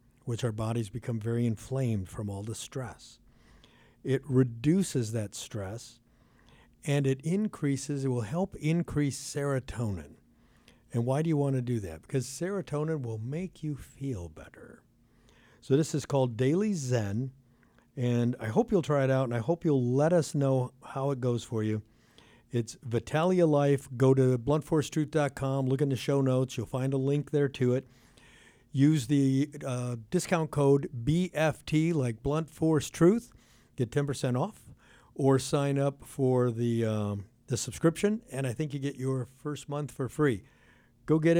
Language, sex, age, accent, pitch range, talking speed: English, male, 60-79, American, 120-150 Hz, 160 wpm